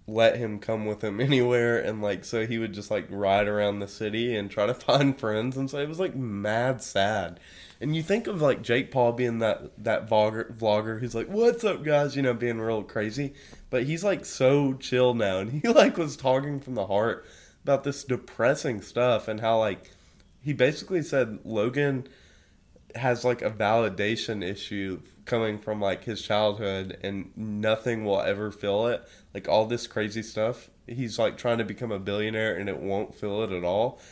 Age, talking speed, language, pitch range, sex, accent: 20-39, 195 wpm, English, 100-125 Hz, male, American